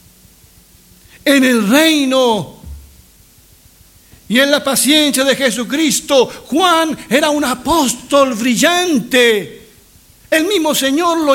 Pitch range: 230-300 Hz